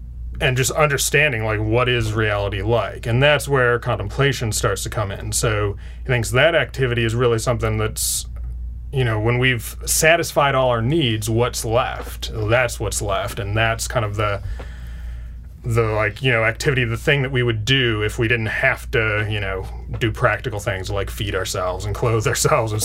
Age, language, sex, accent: 30-49, English, male, American